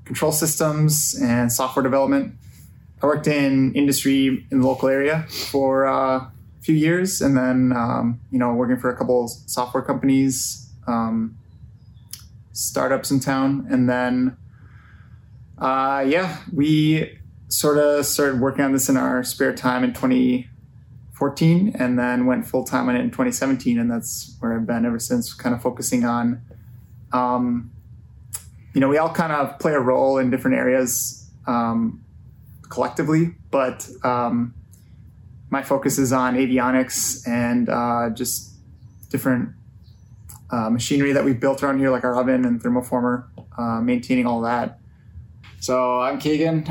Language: English